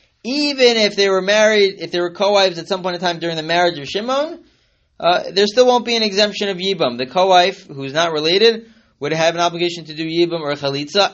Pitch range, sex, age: 160-220 Hz, male, 30-49